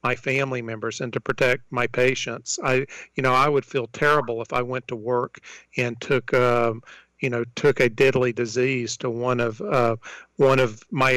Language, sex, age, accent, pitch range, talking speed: English, male, 50-69, American, 125-145 Hz, 195 wpm